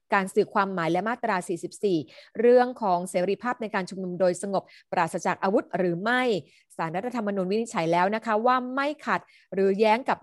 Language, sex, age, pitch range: Thai, female, 30-49, 190-235 Hz